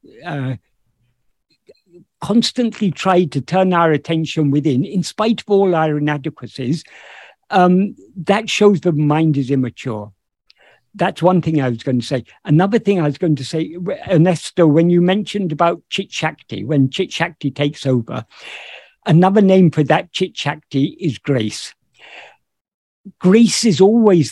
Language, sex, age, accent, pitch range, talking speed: English, male, 50-69, British, 145-195 Hz, 145 wpm